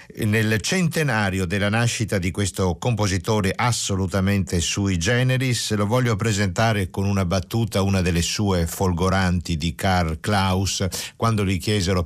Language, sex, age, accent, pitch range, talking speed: Italian, male, 50-69, native, 85-115 Hz, 130 wpm